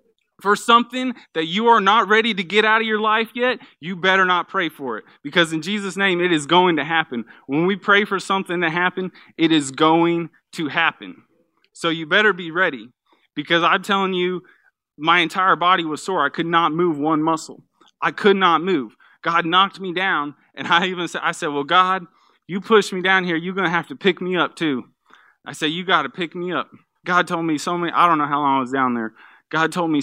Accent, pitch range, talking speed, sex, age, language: American, 145-190 Hz, 230 wpm, male, 20-39, English